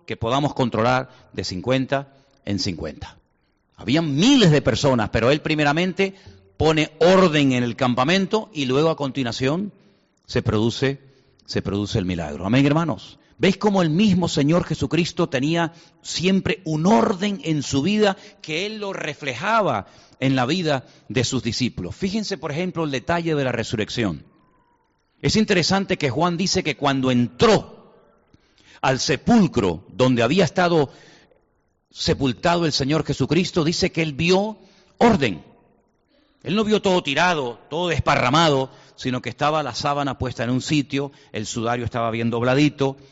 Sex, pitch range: male, 125-170 Hz